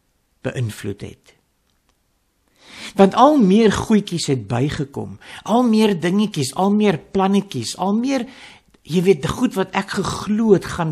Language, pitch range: English, 125-195 Hz